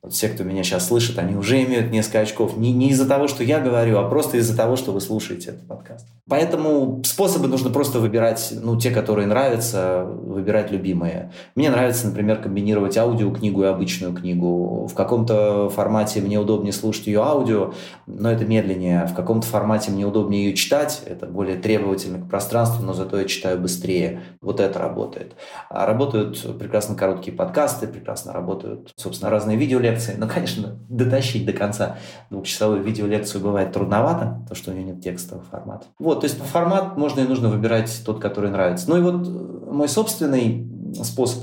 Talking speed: 170 wpm